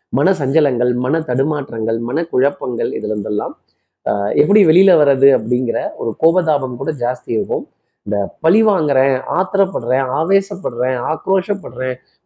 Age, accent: 30-49, native